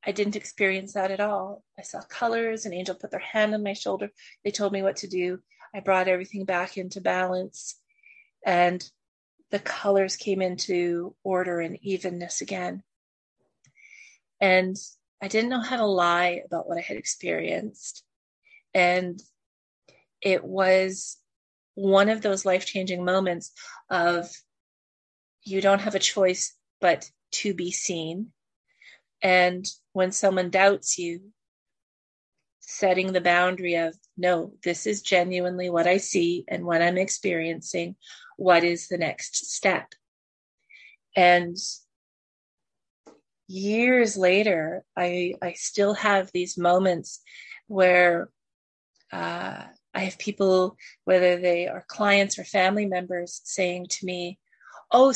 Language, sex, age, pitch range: English, female, 30-49, 175-200 Hz